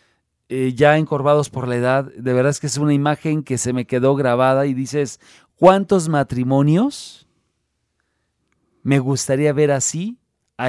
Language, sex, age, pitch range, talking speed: Spanish, male, 40-59, 135-165 Hz, 150 wpm